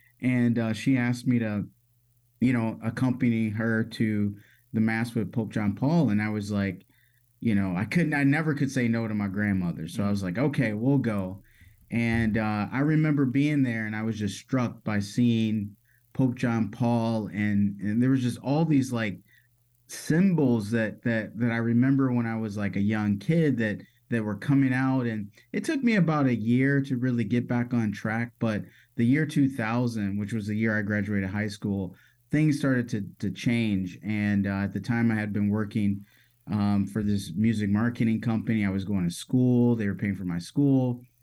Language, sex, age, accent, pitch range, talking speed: English, male, 30-49, American, 105-125 Hz, 200 wpm